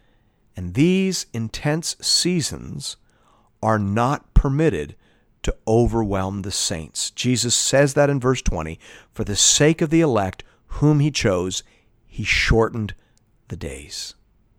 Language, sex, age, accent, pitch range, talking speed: English, male, 40-59, American, 110-165 Hz, 125 wpm